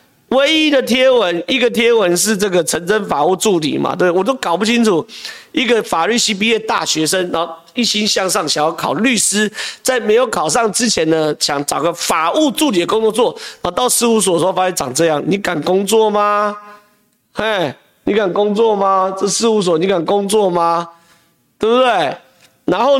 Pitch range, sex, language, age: 175-245 Hz, male, Chinese, 40-59